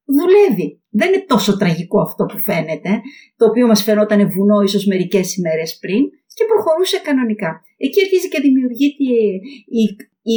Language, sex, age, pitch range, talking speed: Greek, female, 50-69, 210-285 Hz, 150 wpm